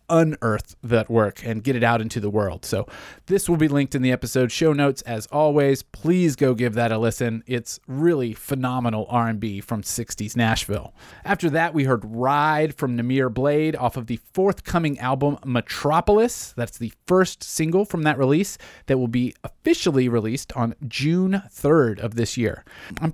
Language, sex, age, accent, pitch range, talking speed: English, male, 30-49, American, 120-180 Hz, 175 wpm